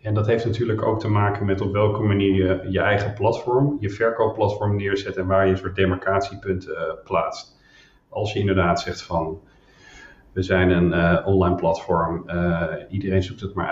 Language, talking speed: Dutch, 185 wpm